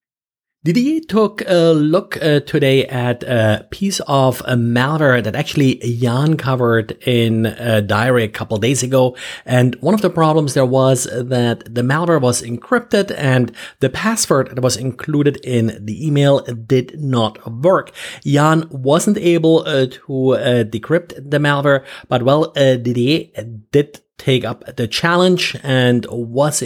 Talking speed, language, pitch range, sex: 150 wpm, English, 120-155 Hz, male